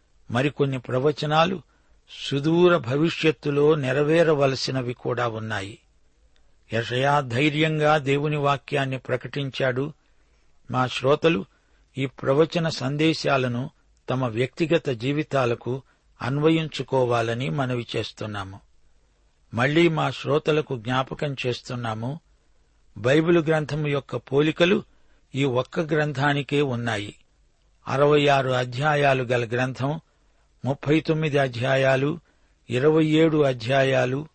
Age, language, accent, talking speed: 60-79, Telugu, native, 80 wpm